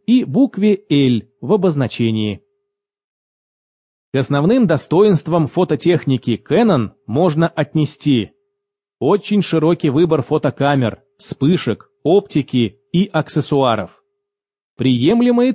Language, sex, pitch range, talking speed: English, male, 135-210 Hz, 80 wpm